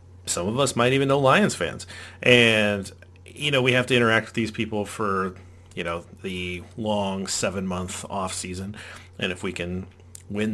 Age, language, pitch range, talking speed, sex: 30-49, English, 90-110 Hz, 170 wpm, male